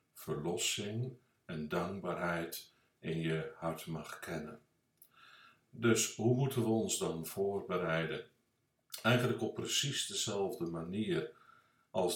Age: 60-79